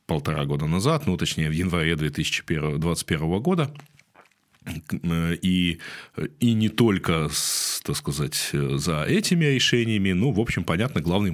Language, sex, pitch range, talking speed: Russian, male, 80-105 Hz, 115 wpm